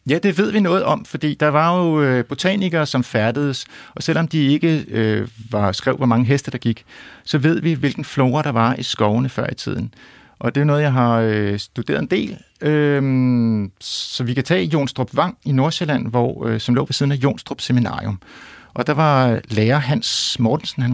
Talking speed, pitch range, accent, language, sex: 200 wpm, 115-145 Hz, native, Danish, male